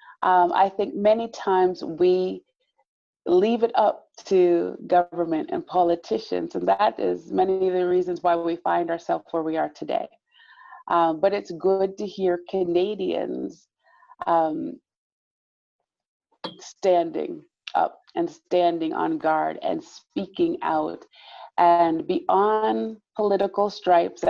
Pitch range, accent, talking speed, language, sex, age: 170-225 Hz, American, 120 wpm, English, female, 30-49